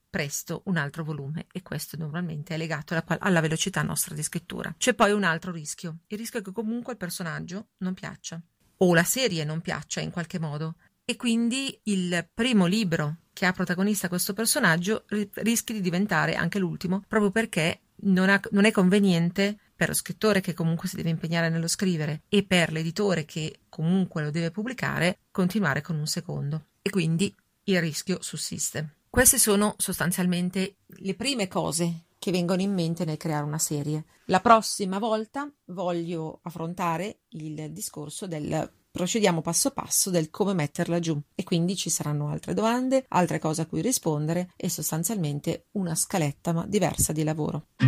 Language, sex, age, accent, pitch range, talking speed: Italian, female, 40-59, native, 160-200 Hz, 170 wpm